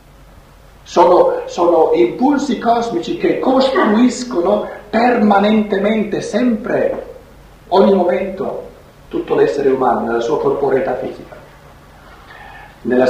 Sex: male